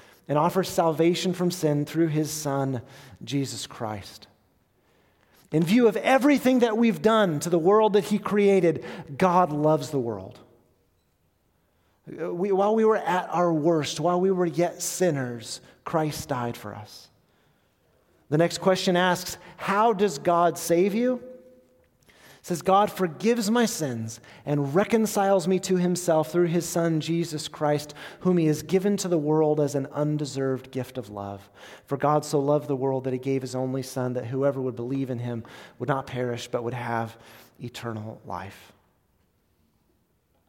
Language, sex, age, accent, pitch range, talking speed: English, male, 30-49, American, 125-180 Hz, 155 wpm